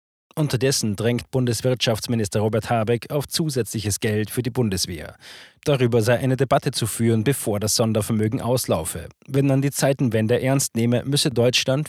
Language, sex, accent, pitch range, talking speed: German, male, German, 110-130 Hz, 145 wpm